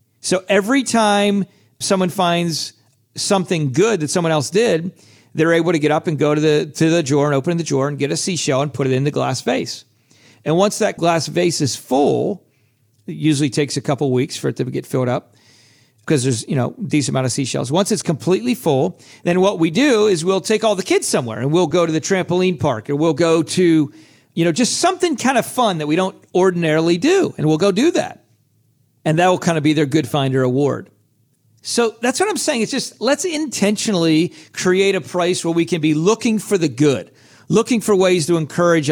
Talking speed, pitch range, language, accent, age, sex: 220 wpm, 135-190 Hz, English, American, 40-59, male